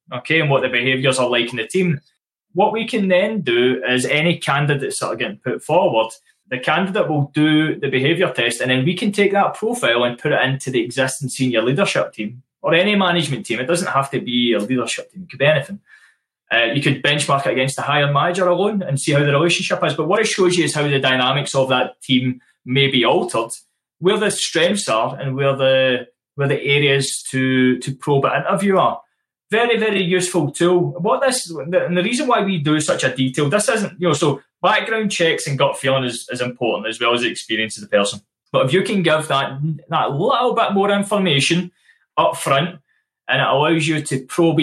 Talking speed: 220 wpm